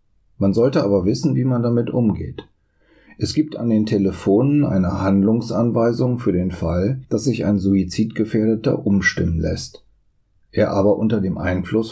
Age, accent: 40-59, German